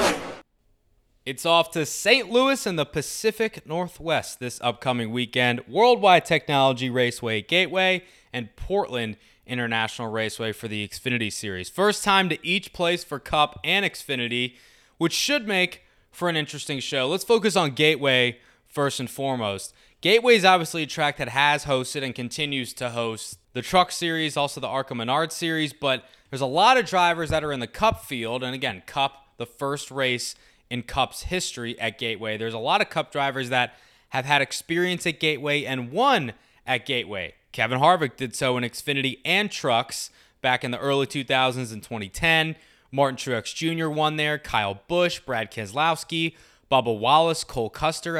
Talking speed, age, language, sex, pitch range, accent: 165 wpm, 20-39, English, male, 125-160 Hz, American